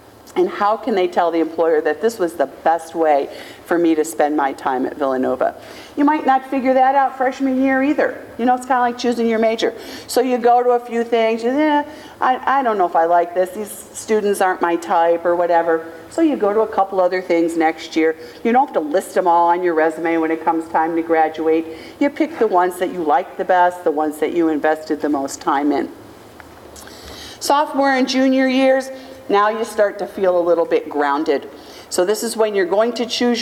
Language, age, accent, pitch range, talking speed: English, 50-69, American, 175-245 Hz, 230 wpm